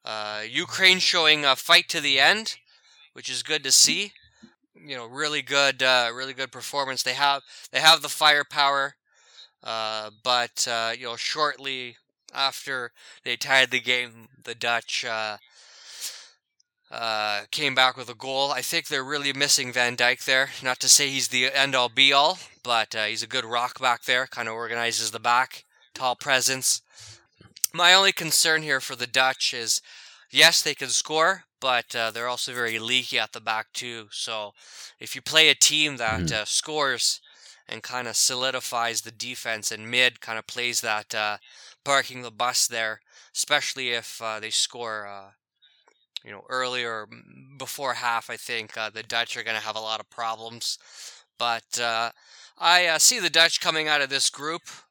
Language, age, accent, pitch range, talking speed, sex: English, 20-39, American, 115-140 Hz, 180 wpm, male